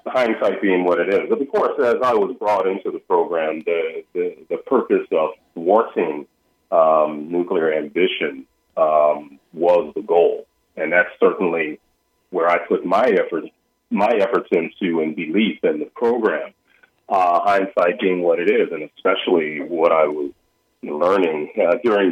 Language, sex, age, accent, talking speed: English, male, 40-59, American, 150 wpm